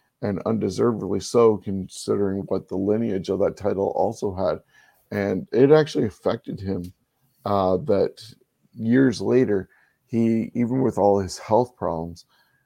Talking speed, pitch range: 135 wpm, 95-115 Hz